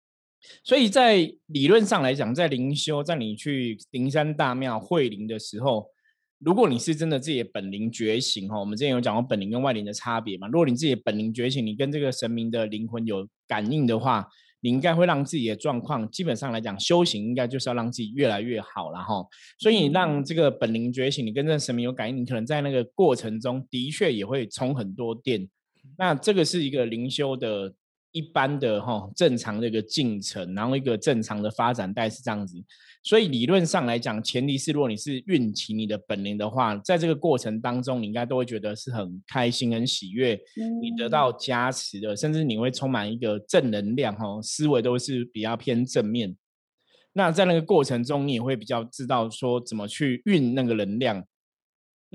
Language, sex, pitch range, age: Chinese, male, 110-145 Hz, 20-39